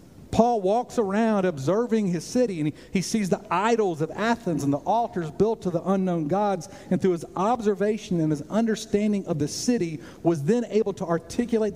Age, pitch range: 50-69, 150-205 Hz